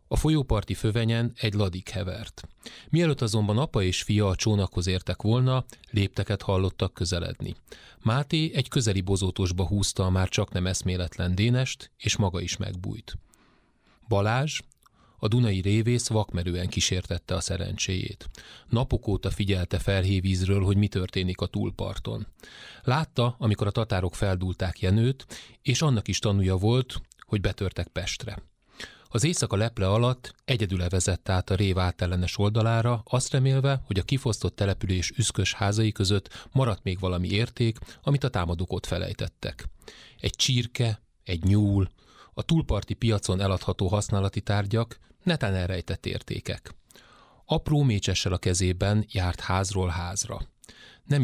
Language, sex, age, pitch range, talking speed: Hungarian, male, 30-49, 95-115 Hz, 135 wpm